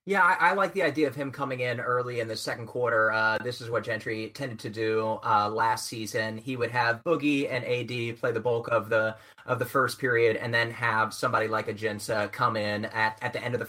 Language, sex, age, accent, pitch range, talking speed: English, male, 30-49, American, 115-145 Hz, 245 wpm